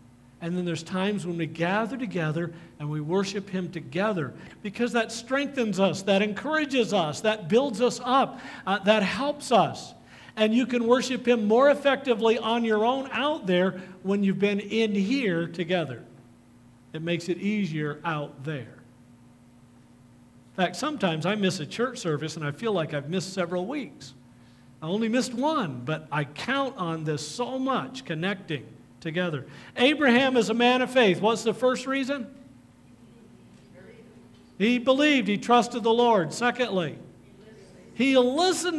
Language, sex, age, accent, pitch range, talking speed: English, male, 50-69, American, 150-245 Hz, 155 wpm